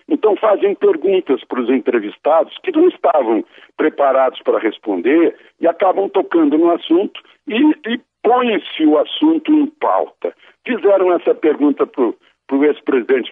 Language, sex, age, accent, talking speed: Portuguese, male, 60-79, Brazilian, 135 wpm